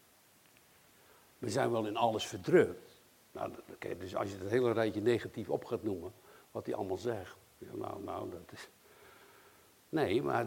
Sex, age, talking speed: male, 60-79, 160 wpm